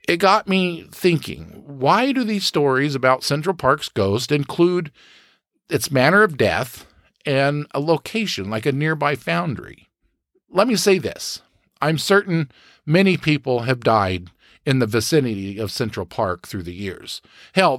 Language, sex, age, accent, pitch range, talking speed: English, male, 50-69, American, 110-160 Hz, 150 wpm